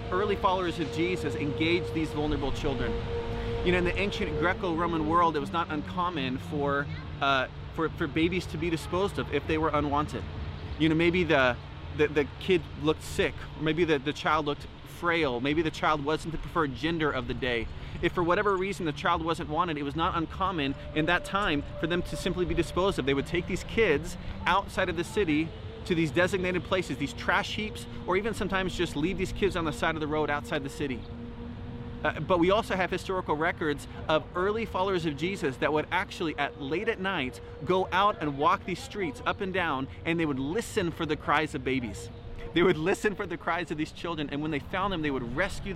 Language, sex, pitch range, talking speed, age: English, male, 135-175 Hz, 215 wpm, 30-49